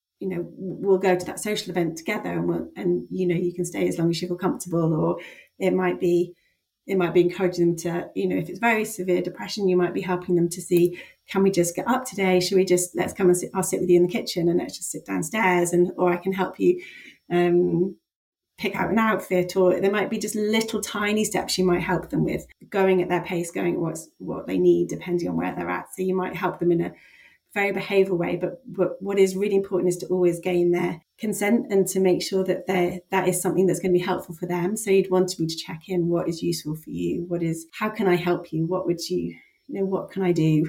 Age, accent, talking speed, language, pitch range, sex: 30-49, British, 260 wpm, English, 175-190 Hz, female